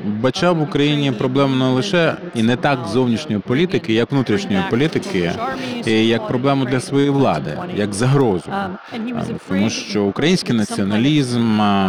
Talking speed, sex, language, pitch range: 130 wpm, male, Ukrainian, 105-140 Hz